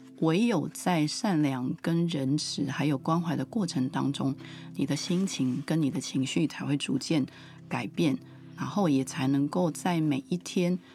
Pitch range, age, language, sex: 140-175 Hz, 30-49, Chinese, female